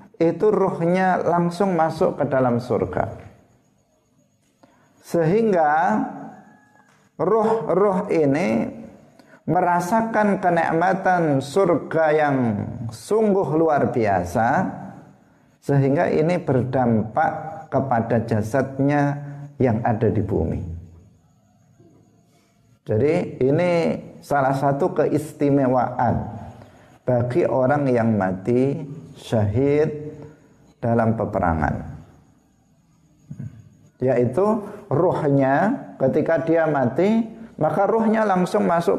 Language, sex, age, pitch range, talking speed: Indonesian, male, 50-69, 125-165 Hz, 70 wpm